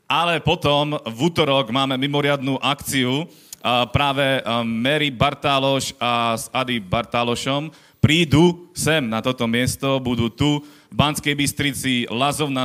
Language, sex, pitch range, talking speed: Slovak, male, 120-145 Hz, 120 wpm